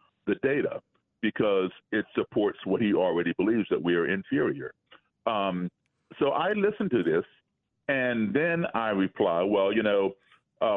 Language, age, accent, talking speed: English, 50-69, American, 150 wpm